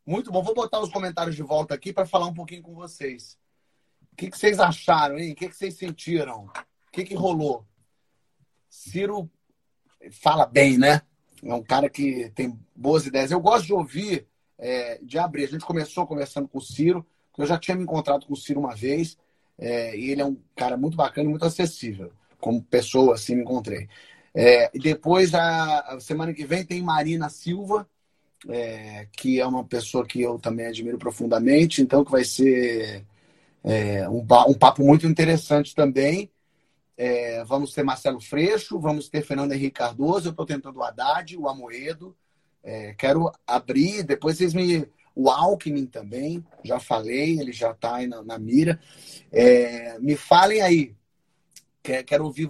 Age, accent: 30-49, Brazilian